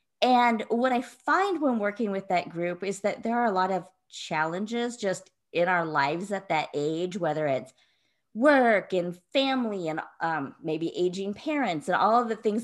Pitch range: 165-225 Hz